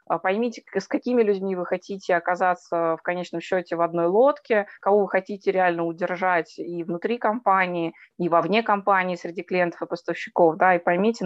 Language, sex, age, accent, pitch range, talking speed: Russian, female, 20-39, native, 180-210 Hz, 170 wpm